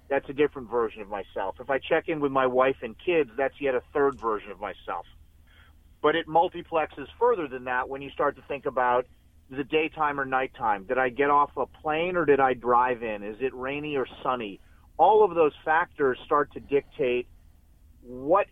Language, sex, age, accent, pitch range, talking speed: English, male, 40-59, American, 120-155 Hz, 200 wpm